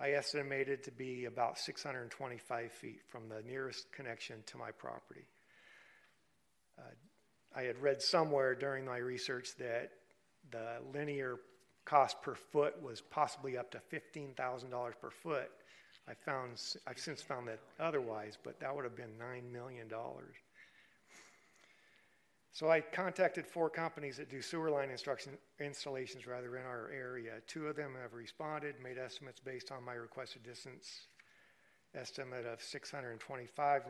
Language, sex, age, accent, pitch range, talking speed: English, male, 50-69, American, 120-140 Hz, 140 wpm